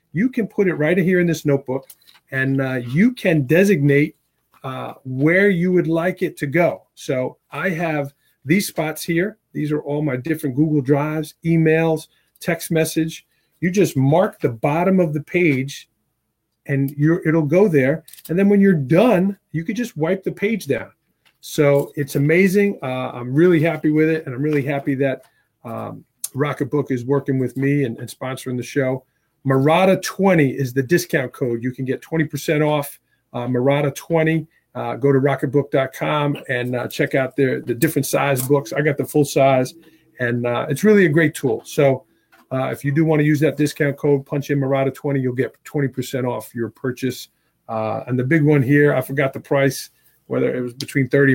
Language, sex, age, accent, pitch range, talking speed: English, male, 40-59, American, 135-160 Hz, 190 wpm